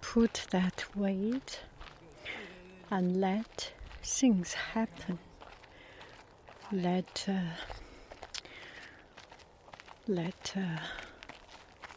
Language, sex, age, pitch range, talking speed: English, female, 60-79, 165-200 Hz, 55 wpm